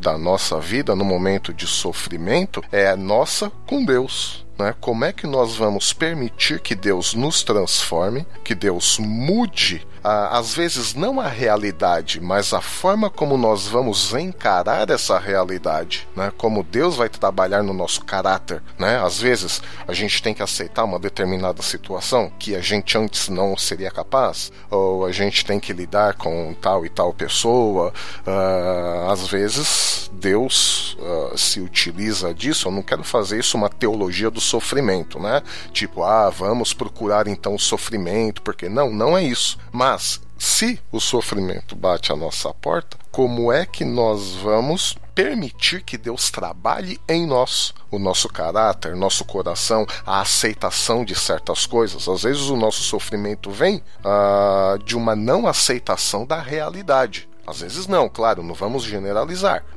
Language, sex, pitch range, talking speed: Portuguese, male, 95-120 Hz, 155 wpm